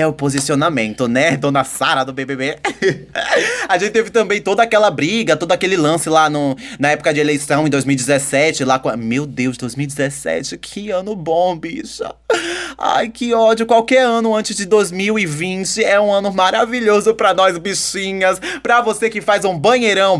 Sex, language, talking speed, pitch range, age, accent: male, Portuguese, 160 wpm, 150-225 Hz, 20-39, Brazilian